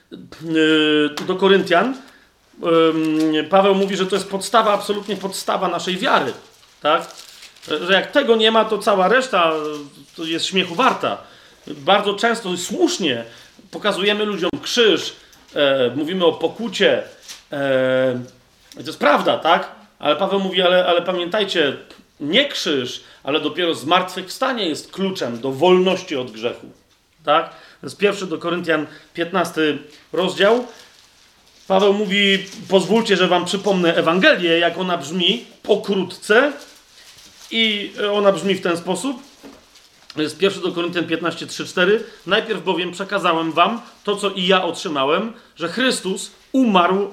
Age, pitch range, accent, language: 40-59, 165-205 Hz, native, Polish